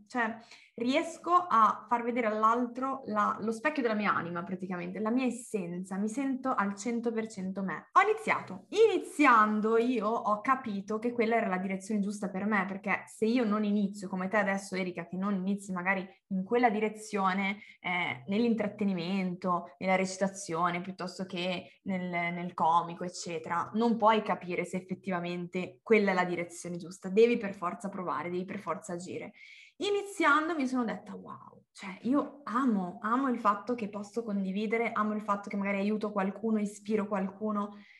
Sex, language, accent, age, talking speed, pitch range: female, Italian, native, 20-39, 160 wpm, 185-230 Hz